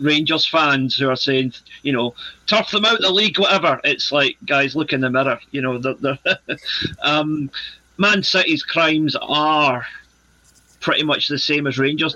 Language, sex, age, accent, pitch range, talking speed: English, male, 40-59, British, 130-160 Hz, 175 wpm